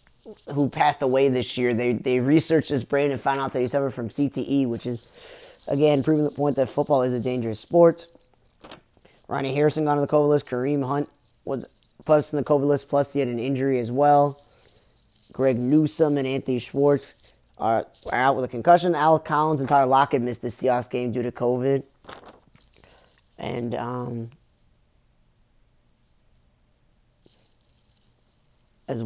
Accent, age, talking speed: American, 20-39, 155 wpm